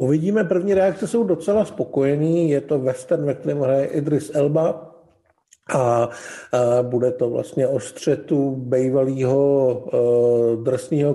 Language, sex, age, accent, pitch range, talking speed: Czech, male, 50-69, native, 125-150 Hz, 130 wpm